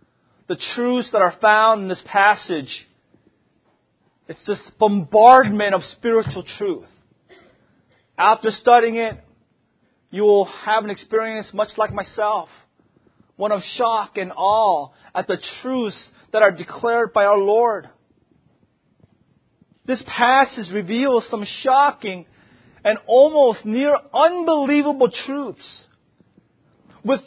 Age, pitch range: 30-49, 215-285 Hz